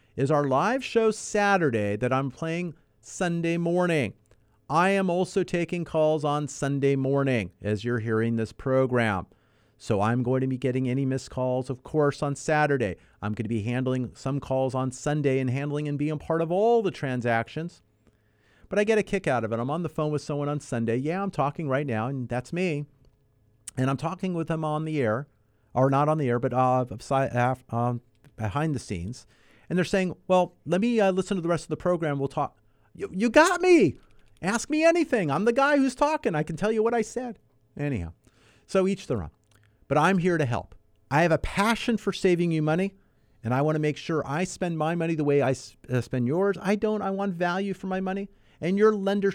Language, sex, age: English, male, 40-59